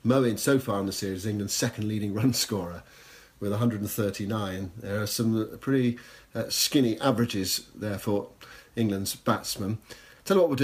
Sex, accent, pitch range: male, British, 105-130 Hz